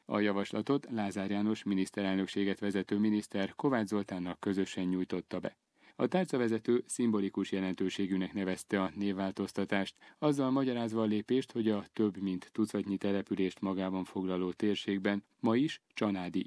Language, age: Hungarian, 30-49